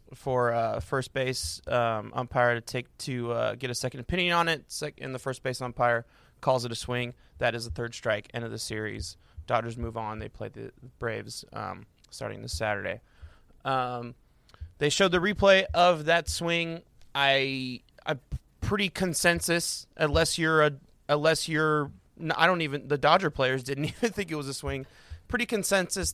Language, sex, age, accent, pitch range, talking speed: English, male, 20-39, American, 120-150 Hz, 180 wpm